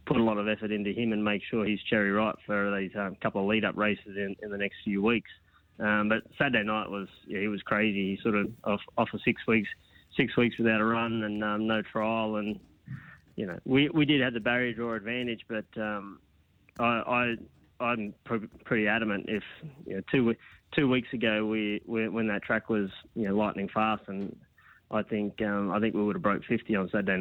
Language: English